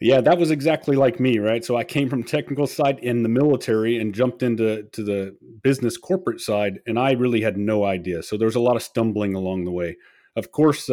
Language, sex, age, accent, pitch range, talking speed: English, male, 40-59, American, 105-140 Hz, 230 wpm